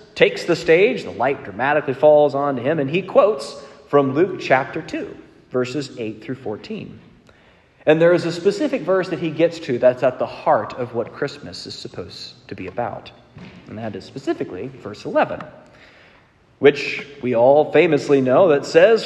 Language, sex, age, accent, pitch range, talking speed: English, male, 30-49, American, 120-170 Hz, 175 wpm